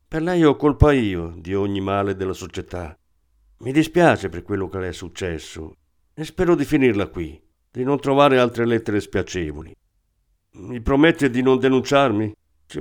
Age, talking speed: 50-69, 165 wpm